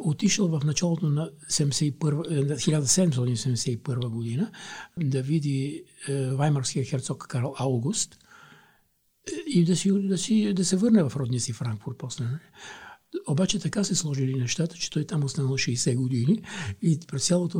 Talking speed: 130 wpm